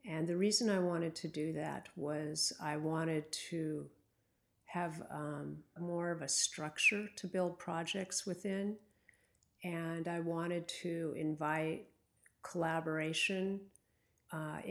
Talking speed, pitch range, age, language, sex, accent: 120 wpm, 155-185 Hz, 50-69, English, female, American